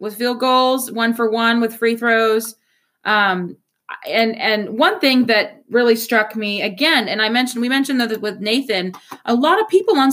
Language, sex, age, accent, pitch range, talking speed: English, female, 20-39, American, 225-280 Hz, 190 wpm